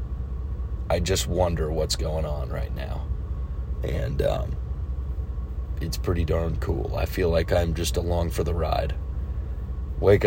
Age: 30-49